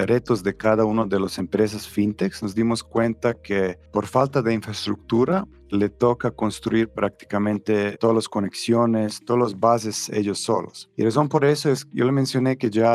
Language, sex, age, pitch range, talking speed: Spanish, male, 40-59, 100-120 Hz, 180 wpm